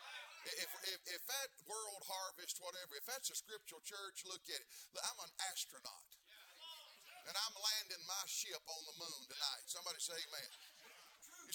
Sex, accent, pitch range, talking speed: male, American, 180-255 Hz, 160 wpm